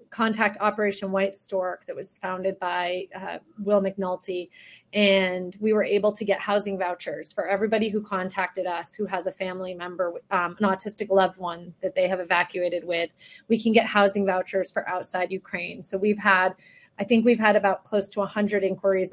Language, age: English, 30-49